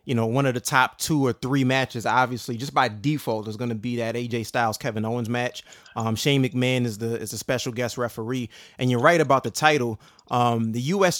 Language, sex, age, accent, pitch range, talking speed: English, male, 20-39, American, 120-145 Hz, 230 wpm